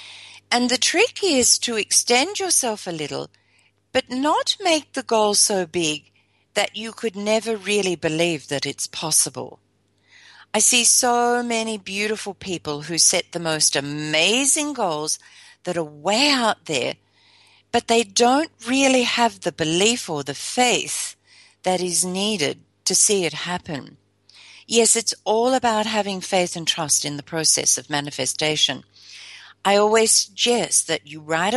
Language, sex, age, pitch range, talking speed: English, female, 50-69, 155-235 Hz, 150 wpm